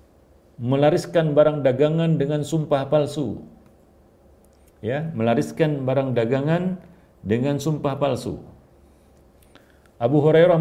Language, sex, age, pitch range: Malay, male, 50-69, 105-150 Hz